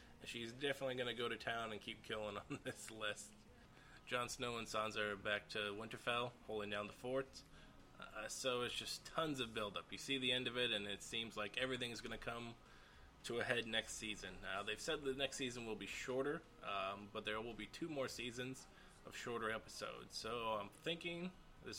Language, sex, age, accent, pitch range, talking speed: English, male, 20-39, American, 105-120 Hz, 210 wpm